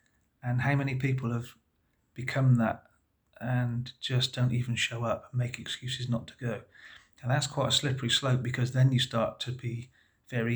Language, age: English, 40-59